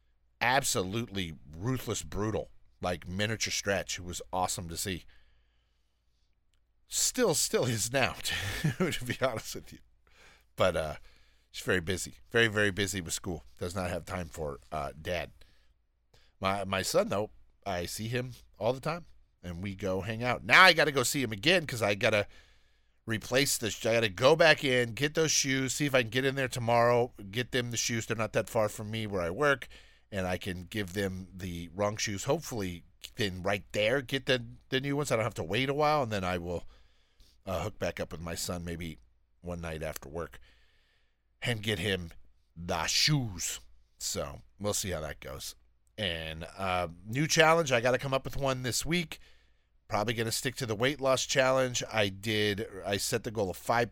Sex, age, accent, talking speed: male, 40-59, American, 195 wpm